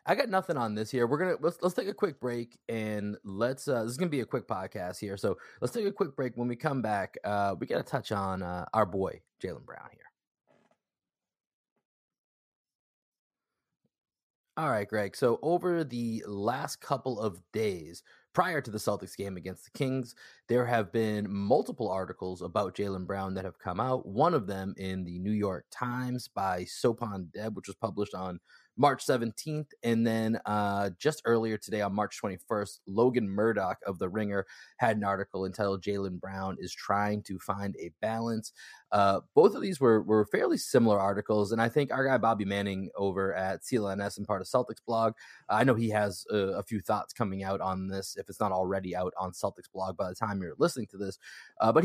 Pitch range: 95-120 Hz